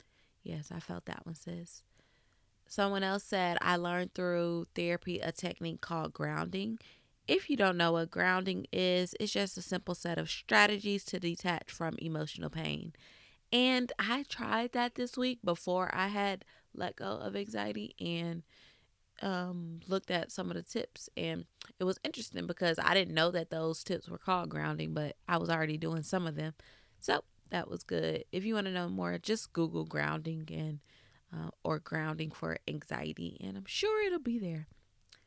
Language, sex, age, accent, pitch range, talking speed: English, female, 20-39, American, 145-195 Hz, 175 wpm